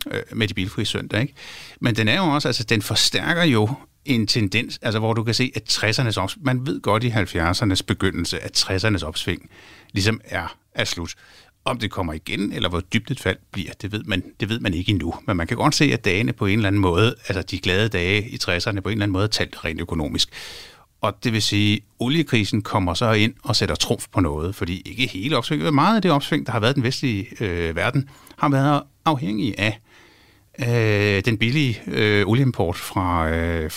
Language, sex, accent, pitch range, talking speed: Danish, male, native, 95-125 Hz, 215 wpm